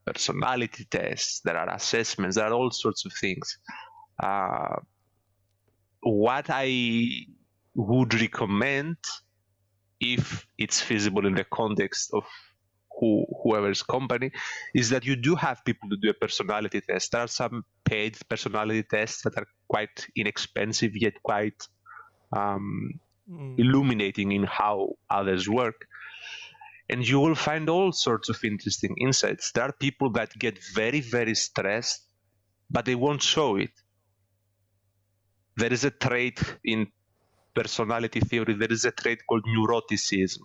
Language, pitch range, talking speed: English, 100-125 Hz, 135 wpm